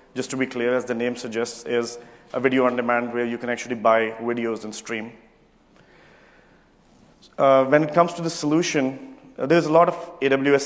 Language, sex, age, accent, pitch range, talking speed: English, male, 30-49, Indian, 120-135 Hz, 190 wpm